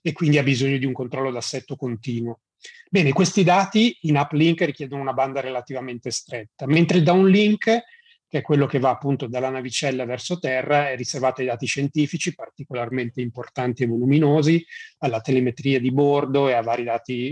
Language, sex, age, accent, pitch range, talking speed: Italian, male, 30-49, native, 125-150 Hz, 170 wpm